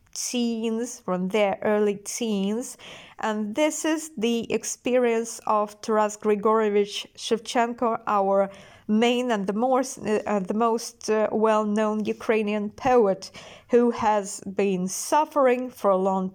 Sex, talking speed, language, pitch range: female, 115 wpm, English, 200-240 Hz